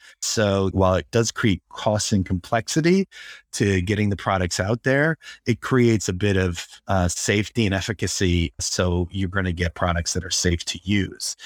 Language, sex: English, male